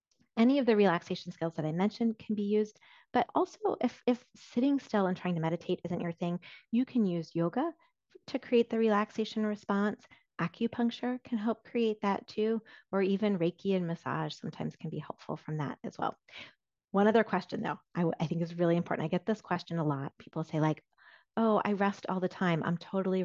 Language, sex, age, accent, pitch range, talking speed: English, female, 30-49, American, 170-225 Hz, 205 wpm